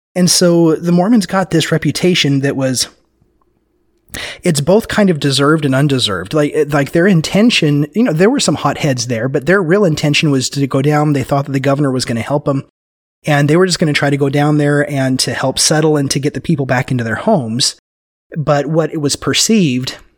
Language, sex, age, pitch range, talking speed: English, male, 30-49, 125-160 Hz, 220 wpm